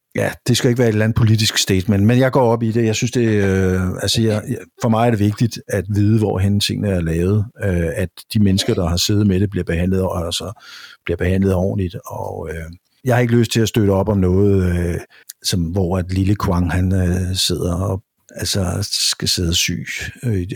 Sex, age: male, 60-79